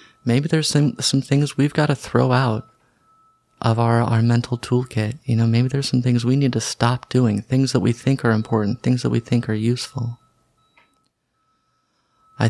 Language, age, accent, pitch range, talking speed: English, 30-49, American, 115-125 Hz, 185 wpm